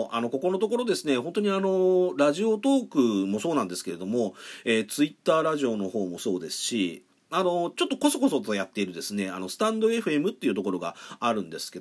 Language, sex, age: Japanese, male, 40-59